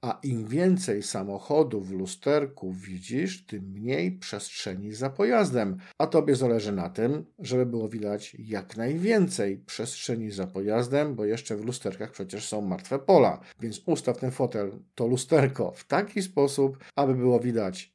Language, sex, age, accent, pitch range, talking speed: Polish, male, 50-69, native, 110-140 Hz, 150 wpm